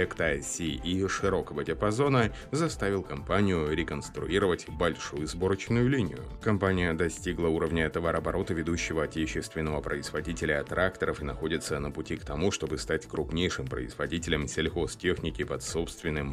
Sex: male